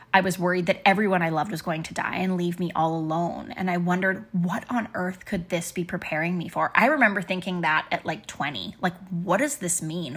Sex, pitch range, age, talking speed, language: female, 170-205 Hz, 20-39, 235 wpm, English